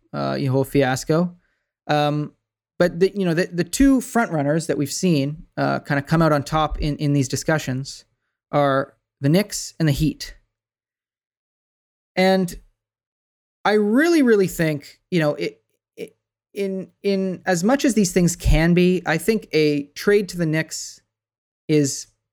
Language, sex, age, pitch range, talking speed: English, male, 20-39, 140-175 Hz, 165 wpm